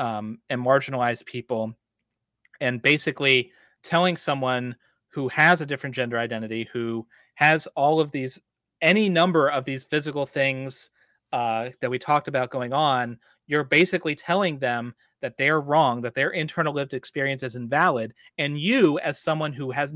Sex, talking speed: male, 155 wpm